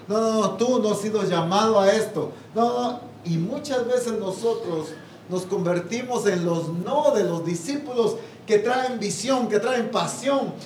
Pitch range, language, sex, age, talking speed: 160-220 Hz, English, male, 40-59, 170 wpm